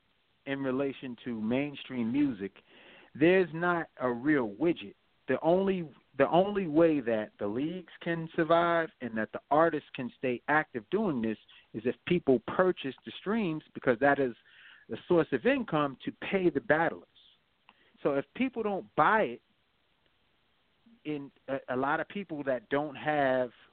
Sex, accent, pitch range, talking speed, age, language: male, American, 120-160 Hz, 155 wpm, 40-59, English